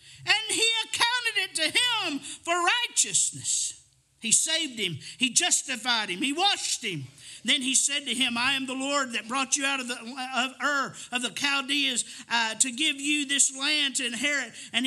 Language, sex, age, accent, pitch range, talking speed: English, male, 50-69, American, 180-290 Hz, 185 wpm